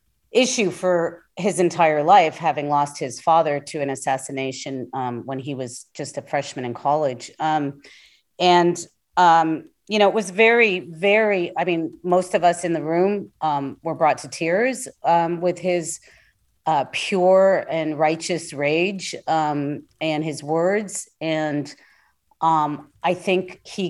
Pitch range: 155-200 Hz